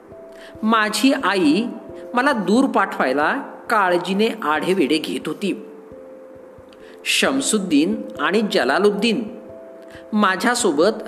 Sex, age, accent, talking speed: male, 40-59, native, 70 wpm